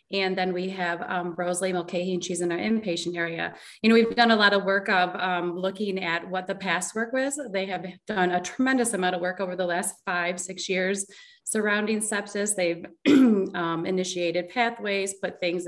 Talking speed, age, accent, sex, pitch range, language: 195 wpm, 30-49, American, female, 180-205 Hz, English